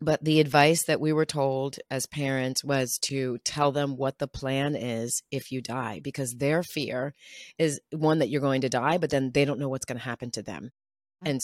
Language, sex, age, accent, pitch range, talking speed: English, female, 30-49, American, 125-150 Hz, 220 wpm